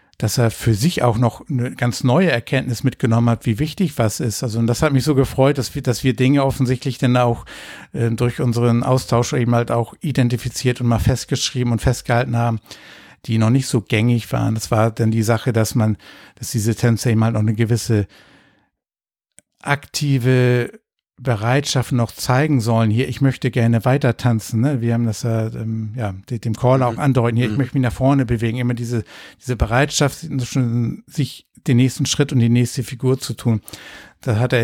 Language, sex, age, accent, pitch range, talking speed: German, male, 60-79, German, 115-130 Hz, 195 wpm